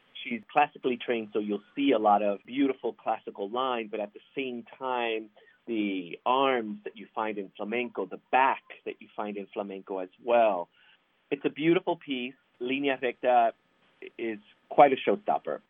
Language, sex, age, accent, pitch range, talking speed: English, male, 40-59, American, 105-135 Hz, 165 wpm